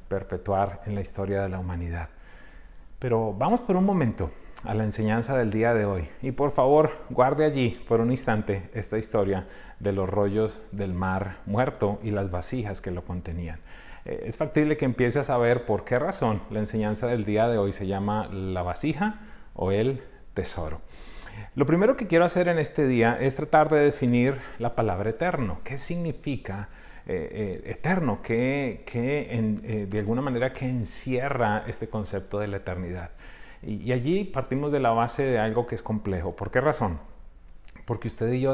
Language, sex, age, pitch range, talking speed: English, male, 40-59, 100-130 Hz, 180 wpm